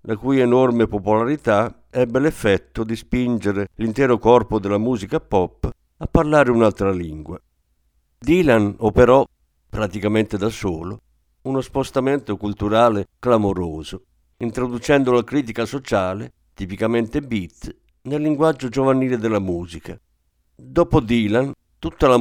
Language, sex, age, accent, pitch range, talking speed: Italian, male, 50-69, native, 95-130 Hz, 110 wpm